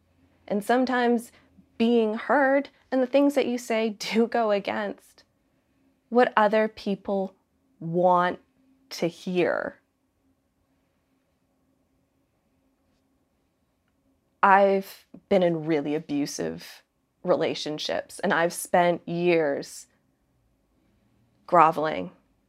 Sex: female